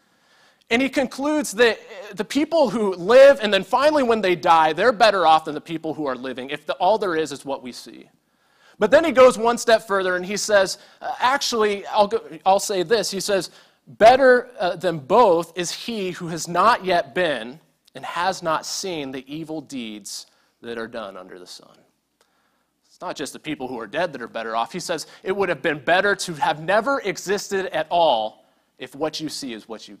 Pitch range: 160-220 Hz